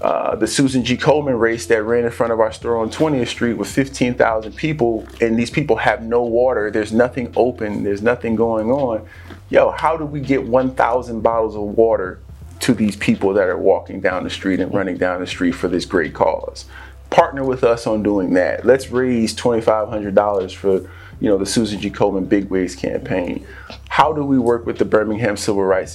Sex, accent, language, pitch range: male, American, English, 100-120 Hz